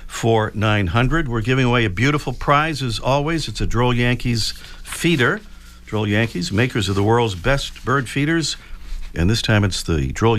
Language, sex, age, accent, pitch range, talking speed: English, male, 50-69, American, 95-140 Hz, 175 wpm